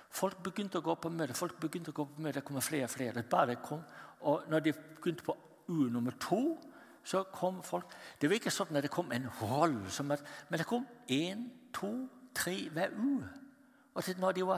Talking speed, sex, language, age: 215 wpm, male, Danish, 60-79